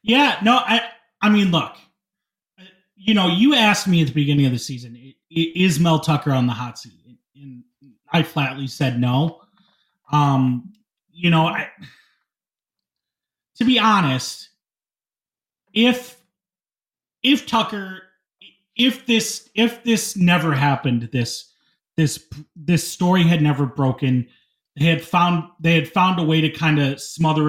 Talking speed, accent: 140 wpm, American